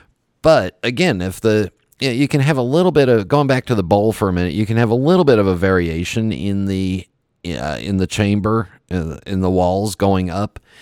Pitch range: 90-110 Hz